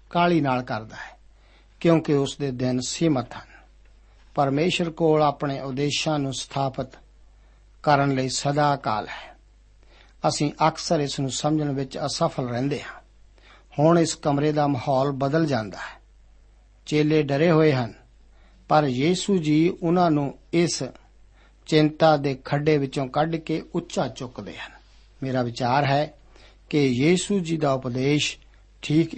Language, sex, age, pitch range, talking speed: Punjabi, male, 60-79, 135-165 Hz, 110 wpm